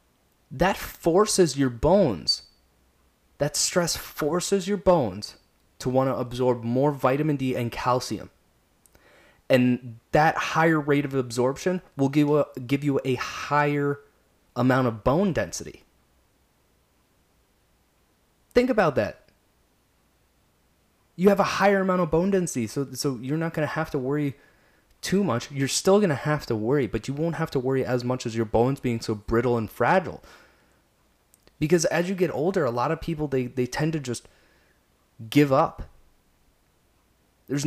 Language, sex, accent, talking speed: English, male, American, 155 wpm